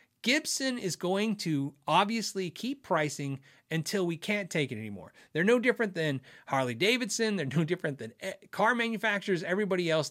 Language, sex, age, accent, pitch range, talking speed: English, male, 30-49, American, 140-210 Hz, 160 wpm